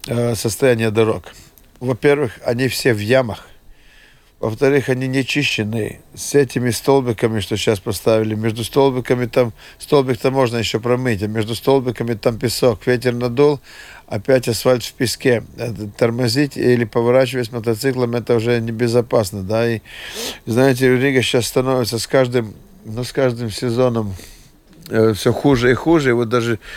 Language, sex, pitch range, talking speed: Russian, male, 115-135 Hz, 140 wpm